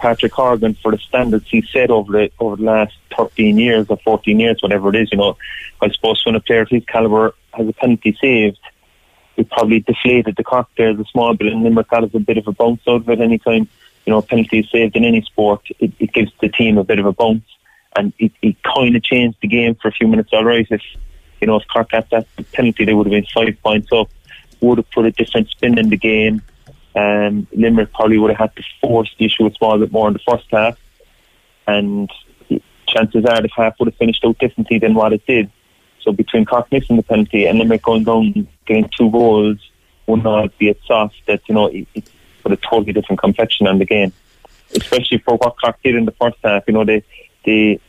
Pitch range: 105-115 Hz